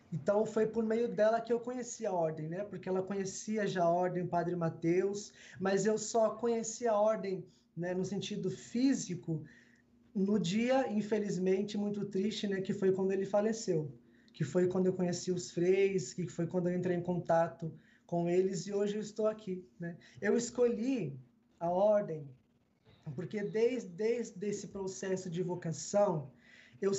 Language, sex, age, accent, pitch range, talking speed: Portuguese, male, 20-39, Brazilian, 175-215 Hz, 165 wpm